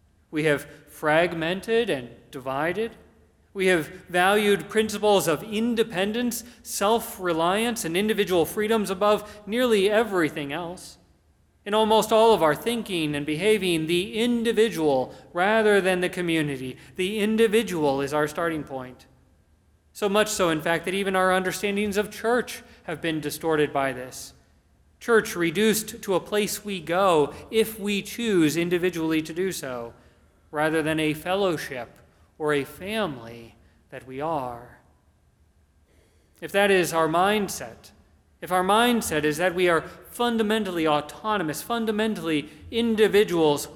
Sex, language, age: male, English, 40-59